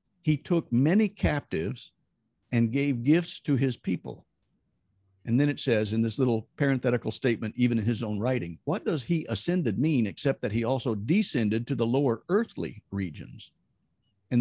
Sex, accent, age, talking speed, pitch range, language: male, American, 50-69, 165 wpm, 110-150 Hz, English